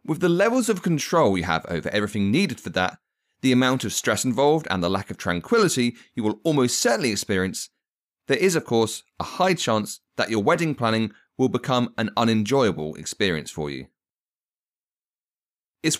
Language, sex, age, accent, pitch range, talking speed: English, male, 30-49, British, 90-130 Hz, 175 wpm